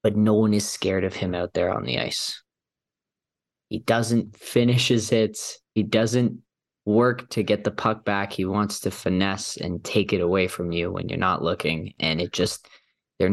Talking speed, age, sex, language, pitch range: 195 wpm, 20-39, male, English, 95-110 Hz